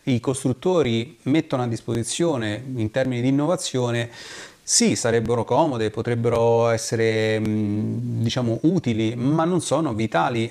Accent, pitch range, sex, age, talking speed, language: native, 110-130 Hz, male, 30-49, 115 wpm, Italian